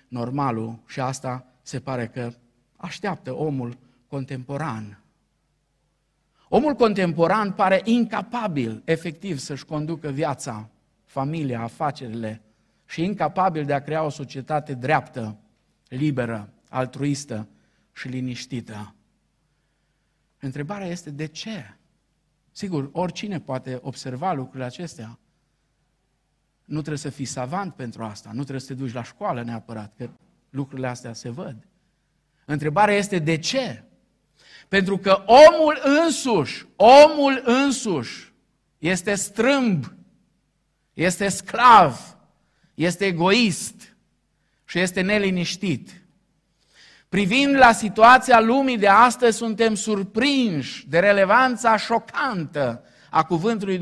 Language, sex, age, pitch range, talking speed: Romanian, male, 50-69, 130-200 Hz, 105 wpm